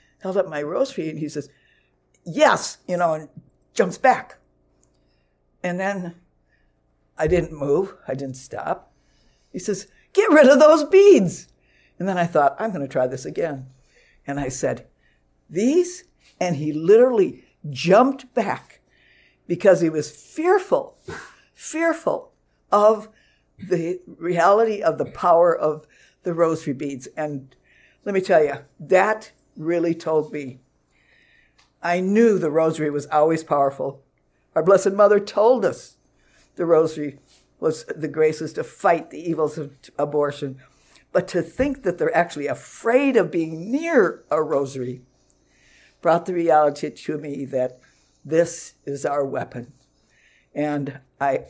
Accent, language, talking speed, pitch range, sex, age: American, English, 140 wpm, 140-185 Hz, female, 60-79